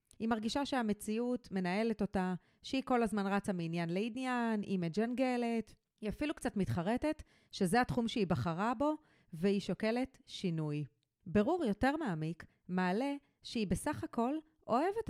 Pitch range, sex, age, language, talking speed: 190-245 Hz, female, 30-49, Hebrew, 130 wpm